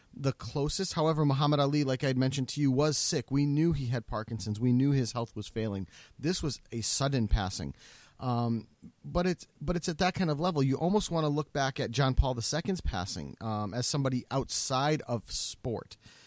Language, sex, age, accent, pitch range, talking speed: English, male, 30-49, American, 120-155 Hz, 205 wpm